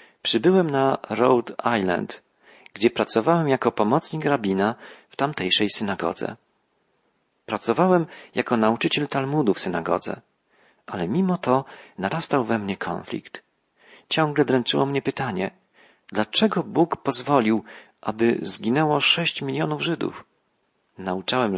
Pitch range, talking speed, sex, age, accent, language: 110-140 Hz, 105 wpm, male, 40-59, native, Polish